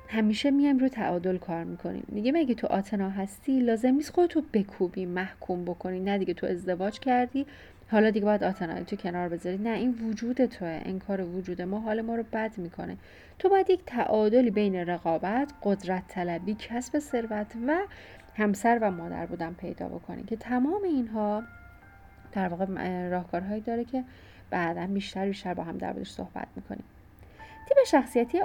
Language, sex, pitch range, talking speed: Persian, female, 185-235 Hz, 160 wpm